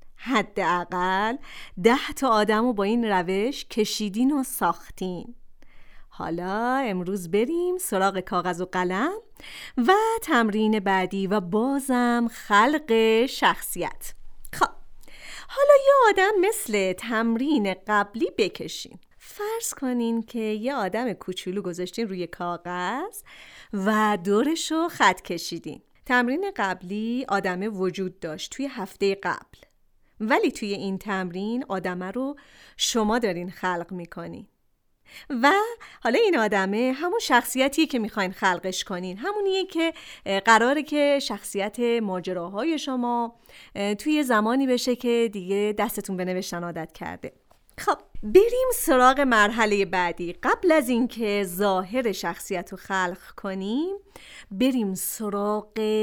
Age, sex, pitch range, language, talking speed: 30-49, female, 190-265 Hz, Persian, 115 wpm